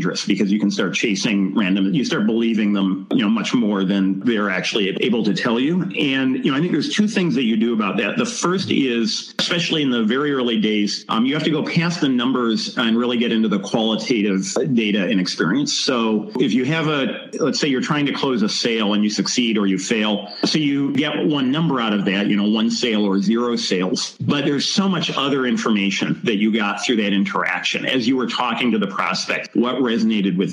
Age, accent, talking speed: 40-59, American, 230 wpm